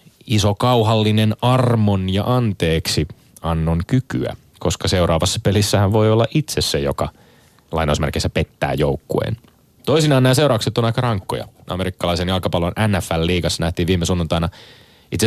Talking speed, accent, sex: 120 wpm, native, male